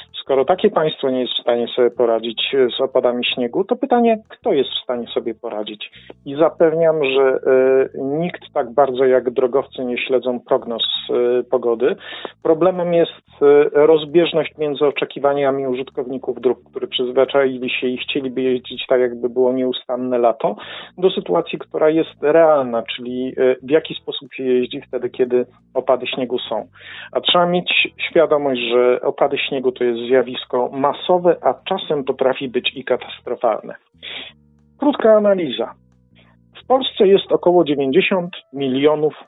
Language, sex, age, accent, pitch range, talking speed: Polish, male, 50-69, native, 125-165 Hz, 140 wpm